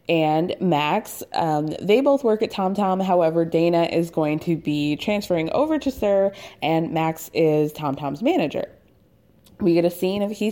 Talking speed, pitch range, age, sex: 165 wpm, 165-220 Hz, 20-39, female